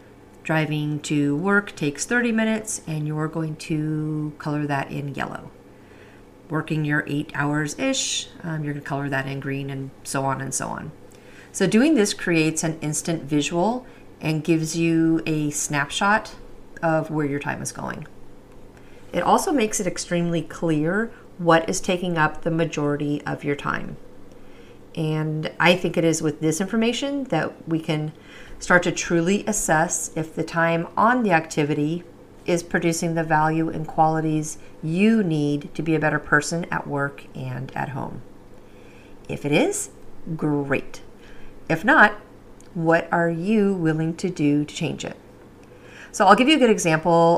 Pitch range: 150-175 Hz